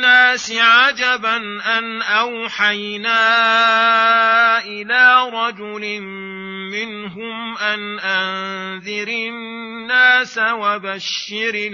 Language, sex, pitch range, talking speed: Arabic, male, 195-230 Hz, 50 wpm